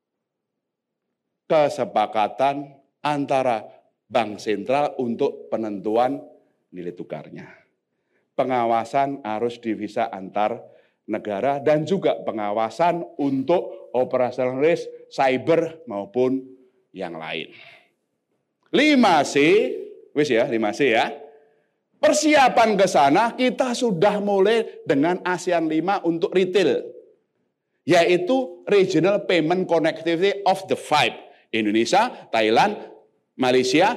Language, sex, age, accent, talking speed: Indonesian, male, 50-69, native, 85 wpm